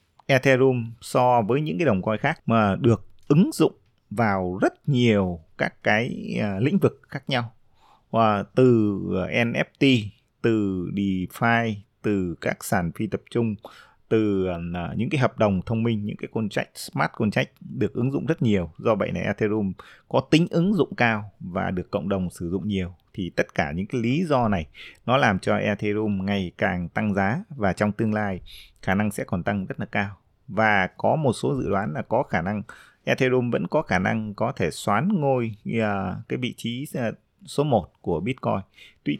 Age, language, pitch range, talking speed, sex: 20-39, Vietnamese, 95-115 Hz, 185 wpm, male